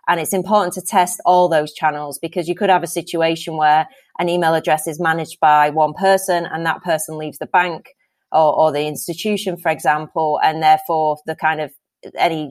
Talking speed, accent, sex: 195 wpm, British, female